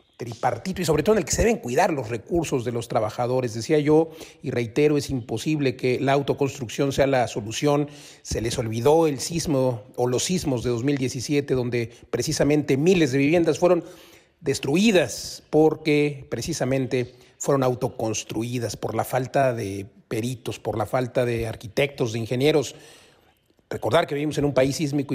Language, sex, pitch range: Spanish, male, 125-150 Hz